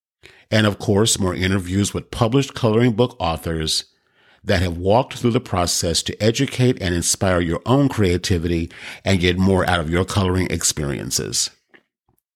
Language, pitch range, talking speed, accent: English, 90-115 Hz, 150 wpm, American